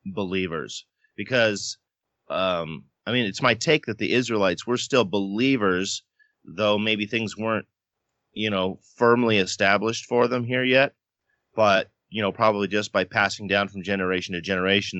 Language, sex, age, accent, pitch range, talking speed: English, male, 30-49, American, 95-115 Hz, 150 wpm